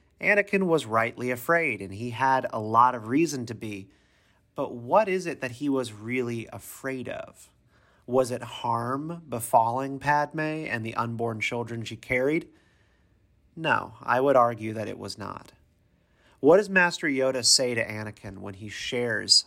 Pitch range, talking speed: 105-135 Hz, 160 wpm